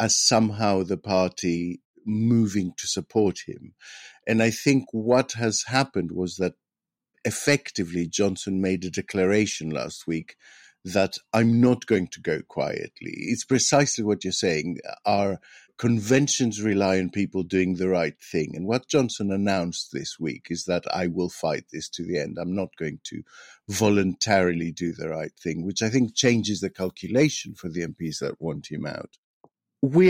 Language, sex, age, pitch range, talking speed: English, male, 50-69, 90-120 Hz, 165 wpm